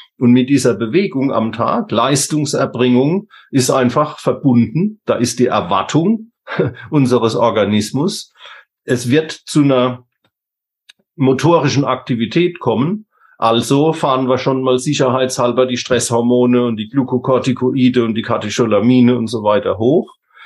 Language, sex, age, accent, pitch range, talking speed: German, male, 40-59, German, 120-140 Hz, 120 wpm